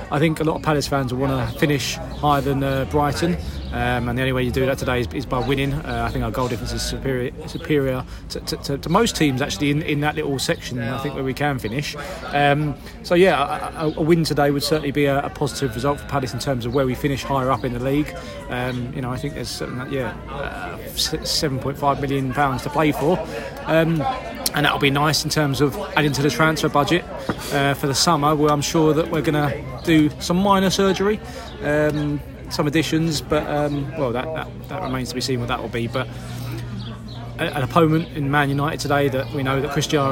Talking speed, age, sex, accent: 230 wpm, 20-39, male, British